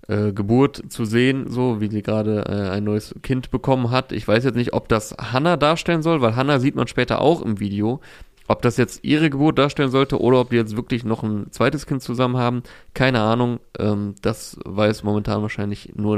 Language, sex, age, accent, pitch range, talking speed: German, male, 20-39, German, 105-120 Hz, 210 wpm